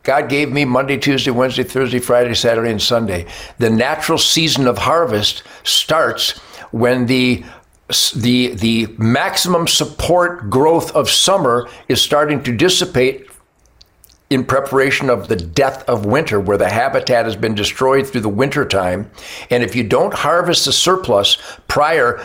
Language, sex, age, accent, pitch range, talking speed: English, male, 60-79, American, 115-155 Hz, 150 wpm